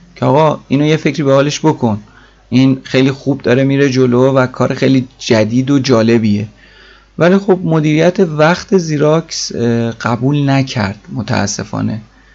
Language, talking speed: Persian, 130 wpm